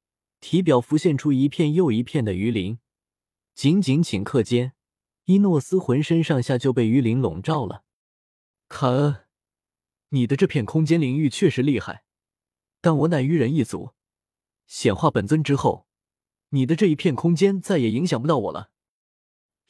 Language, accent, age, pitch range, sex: Chinese, native, 20-39, 115-165 Hz, male